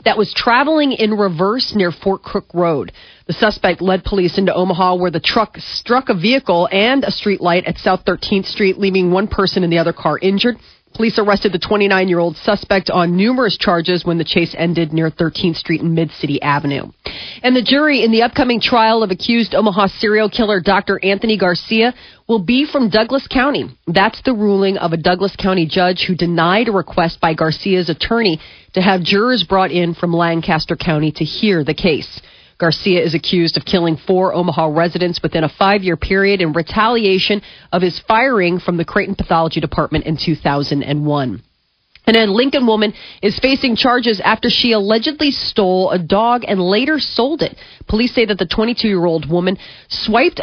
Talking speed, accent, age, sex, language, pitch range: 180 wpm, American, 30-49, female, English, 170-220 Hz